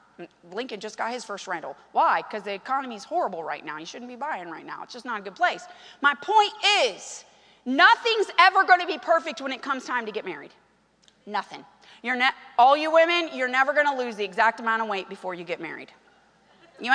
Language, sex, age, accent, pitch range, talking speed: English, female, 30-49, American, 250-370 Hz, 220 wpm